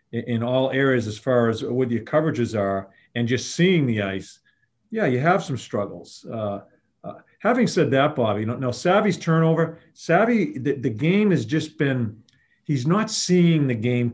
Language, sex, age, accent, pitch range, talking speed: English, male, 40-59, American, 115-160 Hz, 185 wpm